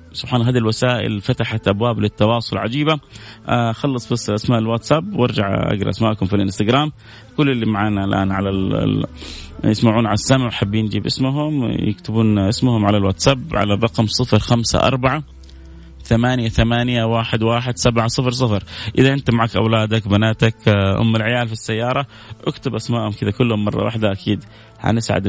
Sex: male